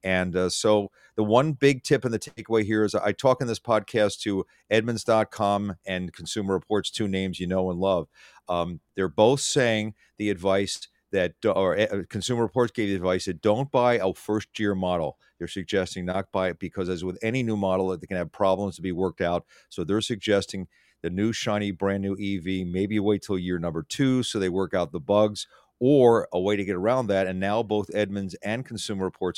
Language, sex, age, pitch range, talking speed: English, male, 40-59, 95-110 Hz, 210 wpm